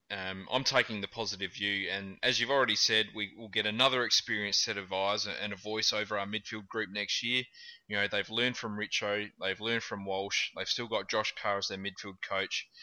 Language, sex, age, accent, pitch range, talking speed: English, male, 20-39, Australian, 105-120 Hz, 220 wpm